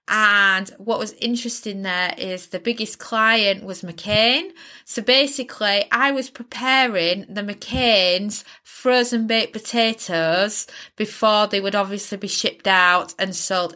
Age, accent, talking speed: 30-49, British, 130 wpm